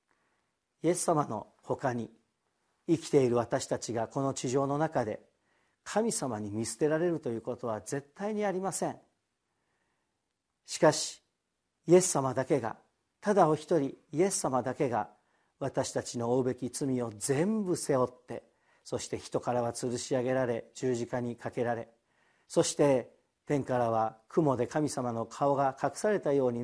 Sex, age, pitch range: male, 50-69, 120-170 Hz